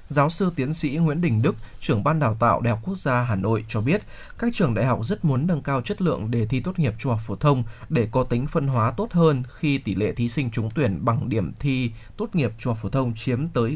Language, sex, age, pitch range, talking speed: Vietnamese, male, 20-39, 115-150 Hz, 270 wpm